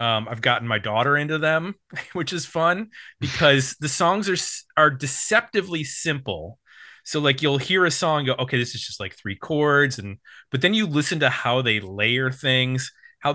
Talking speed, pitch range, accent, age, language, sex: 190 wpm, 125-160 Hz, American, 30-49, English, male